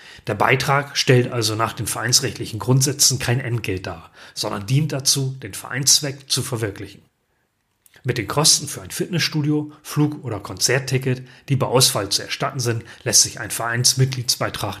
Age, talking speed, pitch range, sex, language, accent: 30-49, 150 wpm, 110-130 Hz, male, German, German